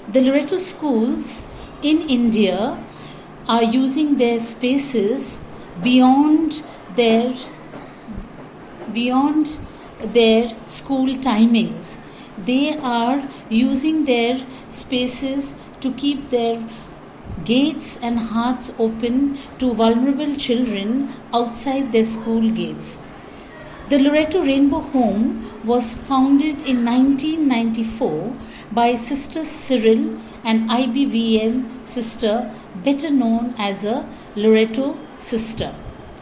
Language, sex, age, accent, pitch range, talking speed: English, female, 50-69, Indian, 230-275 Hz, 90 wpm